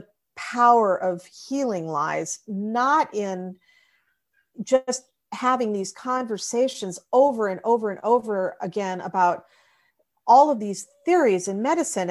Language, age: English, 40-59